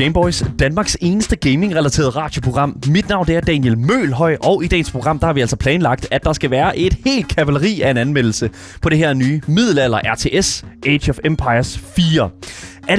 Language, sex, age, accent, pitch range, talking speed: Danish, male, 20-39, native, 130-180 Hz, 185 wpm